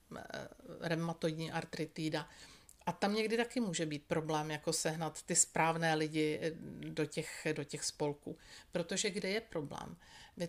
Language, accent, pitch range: Czech, native, 165-195 Hz